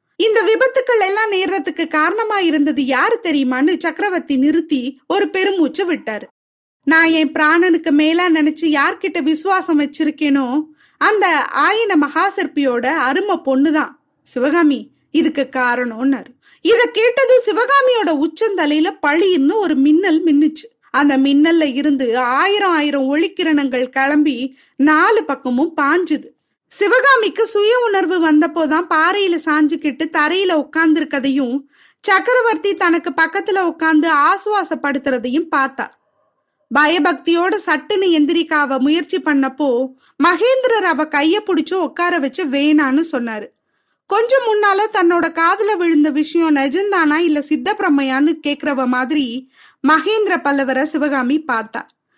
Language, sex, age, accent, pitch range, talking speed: Tamil, female, 20-39, native, 285-375 Hz, 105 wpm